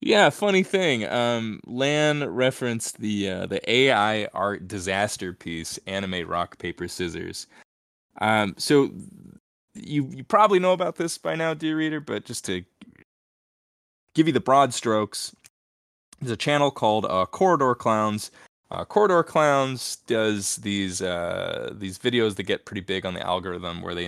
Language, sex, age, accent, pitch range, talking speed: English, male, 20-39, American, 90-130 Hz, 150 wpm